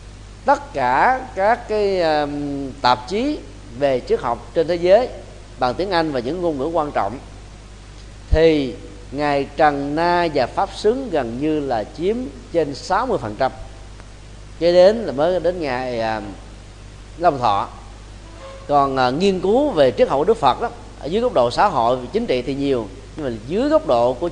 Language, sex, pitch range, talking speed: Vietnamese, male, 110-175 Hz, 175 wpm